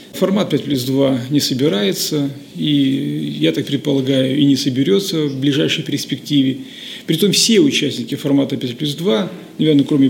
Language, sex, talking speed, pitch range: Russian, male, 150 wpm, 135-180 Hz